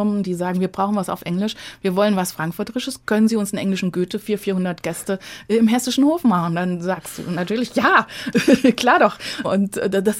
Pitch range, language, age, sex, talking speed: 195-230 Hz, German, 20-39, female, 195 wpm